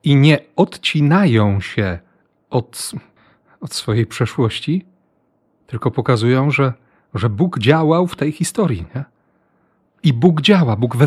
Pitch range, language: 120-155 Hz, Polish